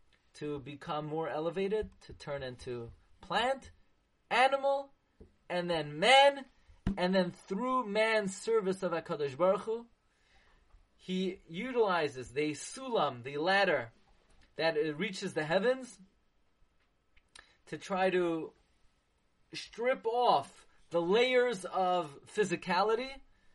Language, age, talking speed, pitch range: English, 30-49, 105 wpm, 155-235 Hz